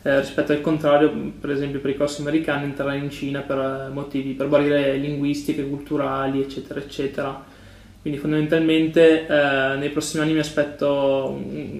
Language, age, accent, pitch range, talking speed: Italian, 20-39, native, 145-155 Hz, 155 wpm